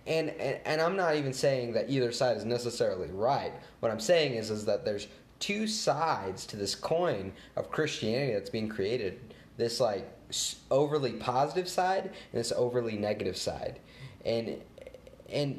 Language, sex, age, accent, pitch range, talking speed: English, male, 20-39, American, 105-150 Hz, 160 wpm